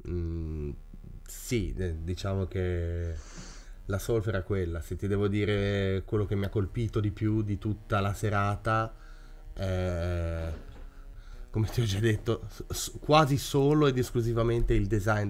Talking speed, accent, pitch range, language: 135 wpm, native, 90-110 Hz, Italian